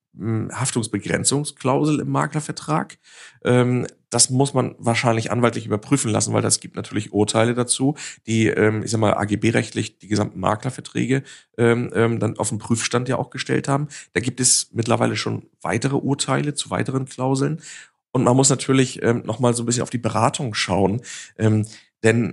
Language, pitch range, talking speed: German, 110-130 Hz, 150 wpm